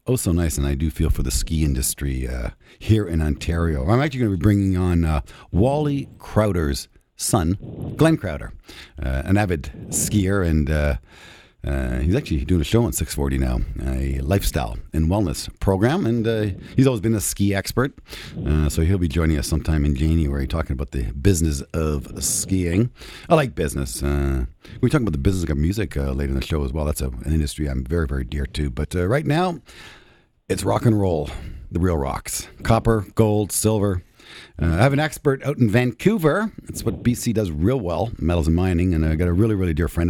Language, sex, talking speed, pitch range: English, male, 205 wpm, 75-105 Hz